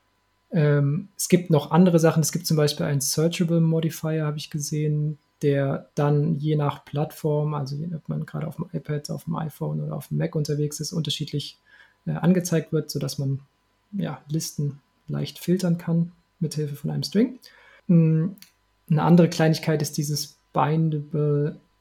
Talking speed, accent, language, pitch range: 160 wpm, German, German, 145-165 Hz